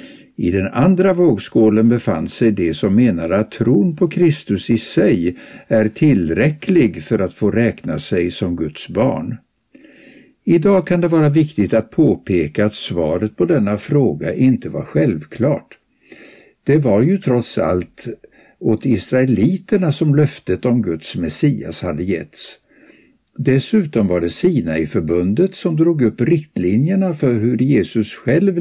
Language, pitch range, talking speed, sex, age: Swedish, 105-180 Hz, 145 wpm, male, 60-79